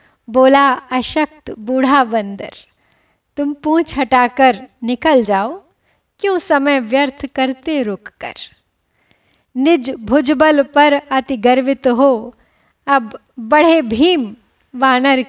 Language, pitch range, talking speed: Hindi, 235-285 Hz, 95 wpm